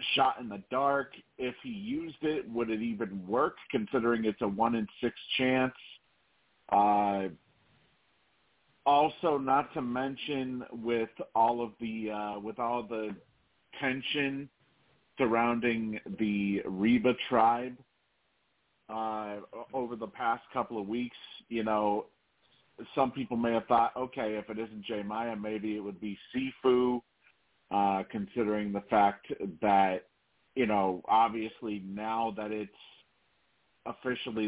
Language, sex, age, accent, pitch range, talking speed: English, male, 40-59, American, 105-130 Hz, 125 wpm